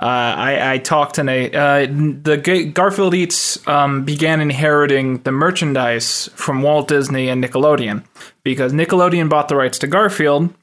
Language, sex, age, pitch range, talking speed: English, male, 20-39, 135-165 Hz, 145 wpm